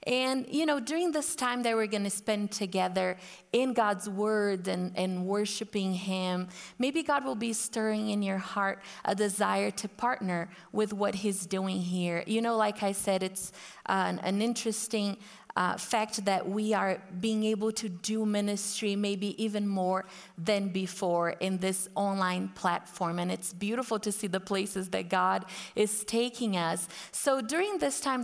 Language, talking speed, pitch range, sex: English, 170 wpm, 185-220 Hz, female